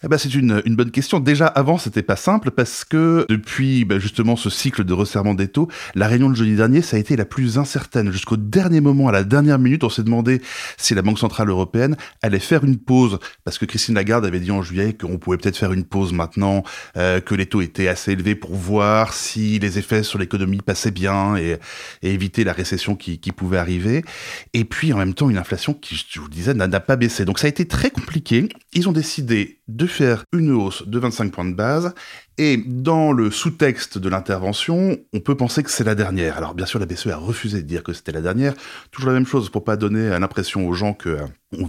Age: 20-39